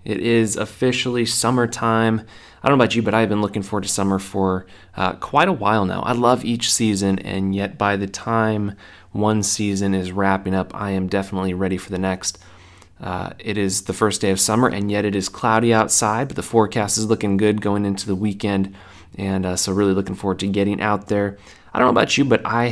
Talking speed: 220 wpm